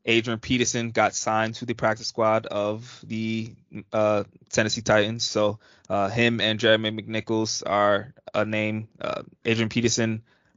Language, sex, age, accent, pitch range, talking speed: English, male, 20-39, American, 100-115 Hz, 140 wpm